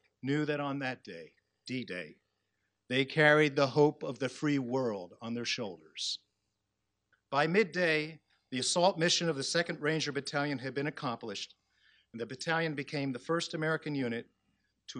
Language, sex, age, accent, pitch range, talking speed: English, male, 50-69, American, 105-155 Hz, 155 wpm